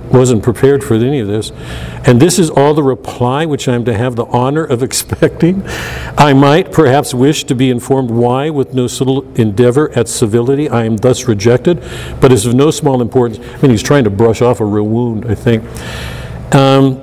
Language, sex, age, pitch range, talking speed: English, male, 50-69, 120-150 Hz, 205 wpm